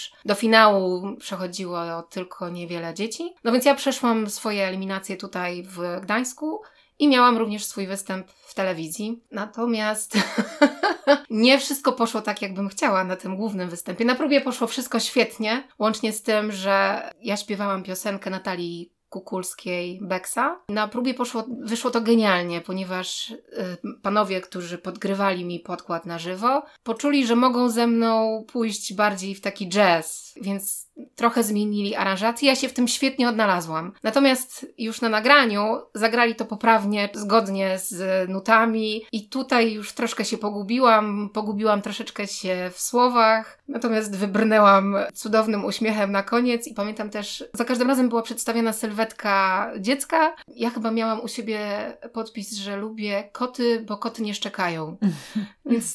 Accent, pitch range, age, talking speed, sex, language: native, 195-235 Hz, 20-39, 145 wpm, female, Polish